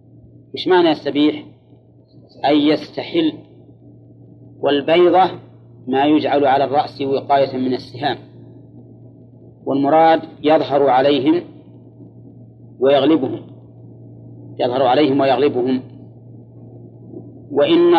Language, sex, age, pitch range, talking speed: Arabic, male, 40-59, 120-155 Hz, 70 wpm